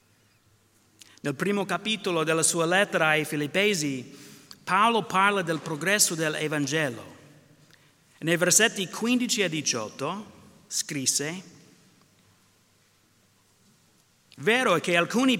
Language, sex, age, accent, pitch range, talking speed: Italian, male, 50-69, native, 150-200 Hz, 95 wpm